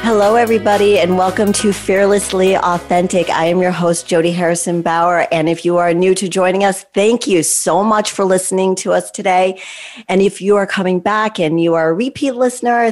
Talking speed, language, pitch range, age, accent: 195 wpm, English, 165-210 Hz, 40-59, American